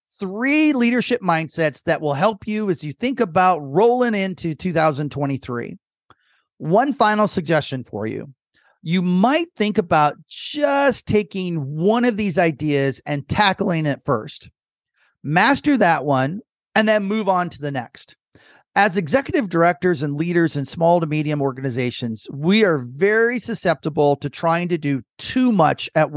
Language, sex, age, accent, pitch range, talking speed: English, male, 40-59, American, 150-215 Hz, 145 wpm